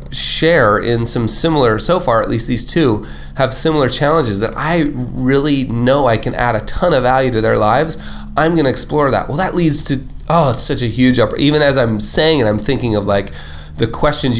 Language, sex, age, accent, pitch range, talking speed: English, male, 30-49, American, 95-135 Hz, 220 wpm